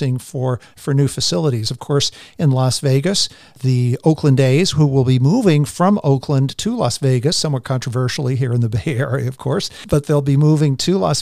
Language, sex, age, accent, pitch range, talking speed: English, male, 50-69, American, 125-155 Hz, 195 wpm